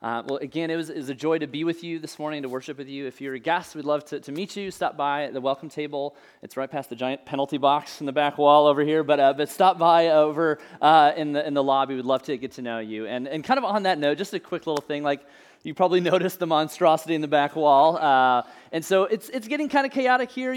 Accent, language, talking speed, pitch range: American, English, 290 wpm, 145-185 Hz